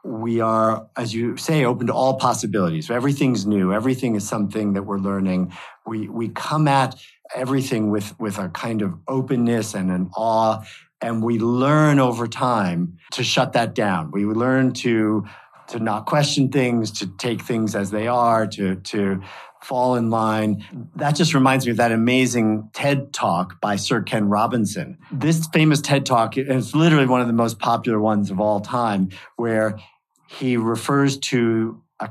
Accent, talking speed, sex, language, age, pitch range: American, 175 wpm, male, English, 50-69, 110-130 Hz